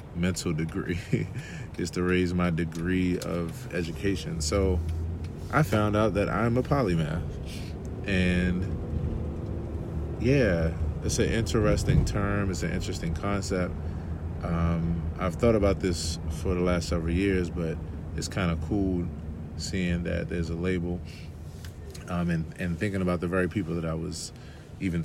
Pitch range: 80-95 Hz